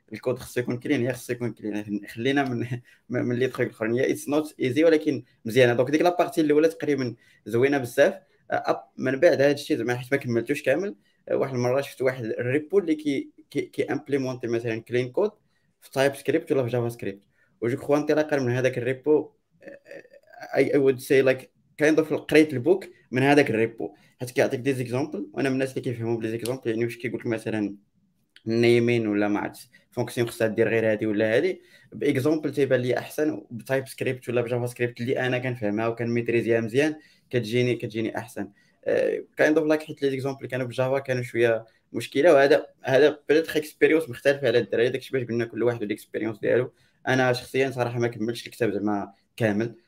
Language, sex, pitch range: Arabic, male, 115-145 Hz